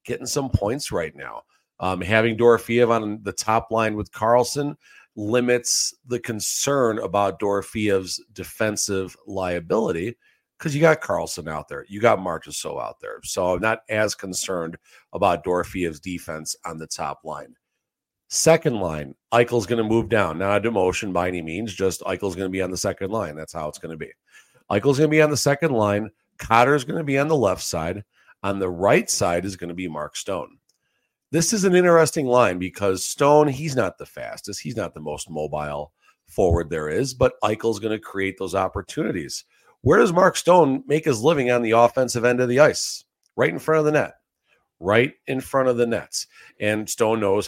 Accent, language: American, English